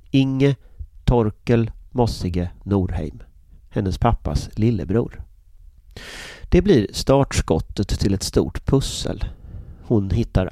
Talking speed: 90 wpm